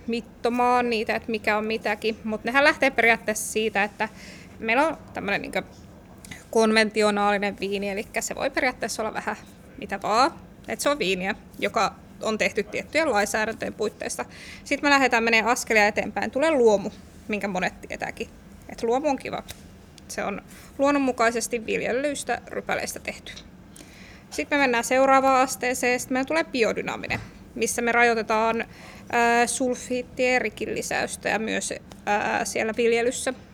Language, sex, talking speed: Finnish, female, 130 wpm